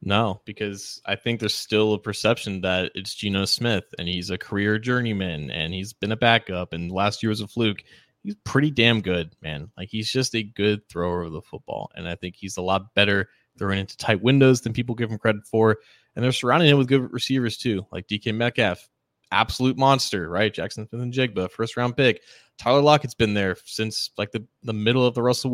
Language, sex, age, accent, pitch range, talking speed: English, male, 20-39, American, 95-120 Hz, 215 wpm